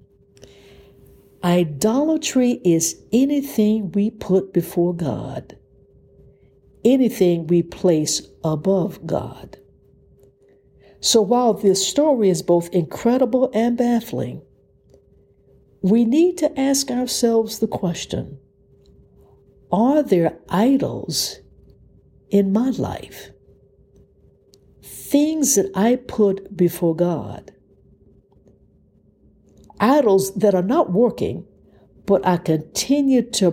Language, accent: English, American